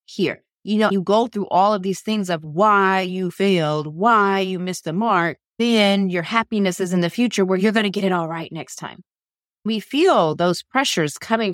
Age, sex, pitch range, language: 30-49, female, 175-225 Hz, English